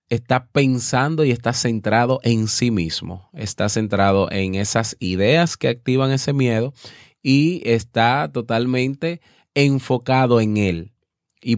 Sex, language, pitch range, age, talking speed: male, Spanish, 95-130 Hz, 20-39, 125 wpm